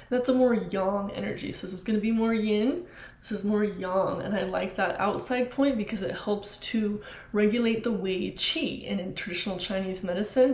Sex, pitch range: female, 195-235 Hz